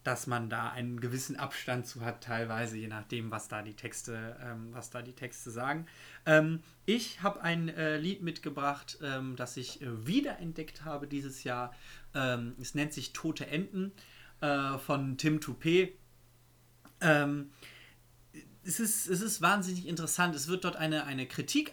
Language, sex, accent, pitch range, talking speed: German, male, German, 125-160 Hz, 140 wpm